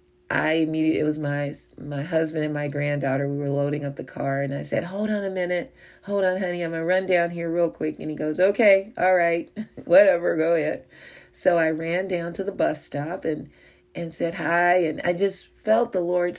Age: 40-59